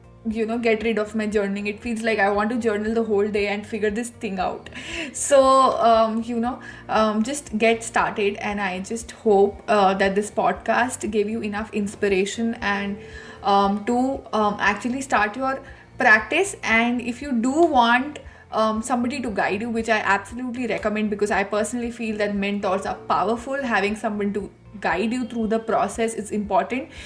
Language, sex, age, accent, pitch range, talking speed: English, female, 20-39, Indian, 210-245 Hz, 180 wpm